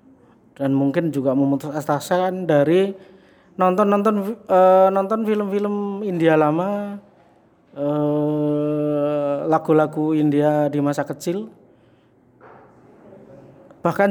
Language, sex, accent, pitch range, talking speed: Indonesian, male, native, 145-185 Hz, 80 wpm